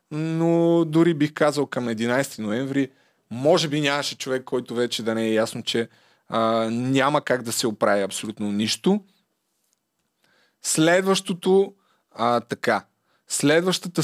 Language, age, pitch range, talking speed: Bulgarian, 30-49, 135-175 Hz, 130 wpm